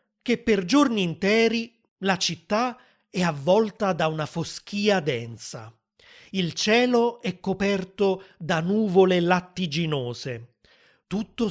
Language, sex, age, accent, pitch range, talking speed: Italian, male, 30-49, native, 155-200 Hz, 105 wpm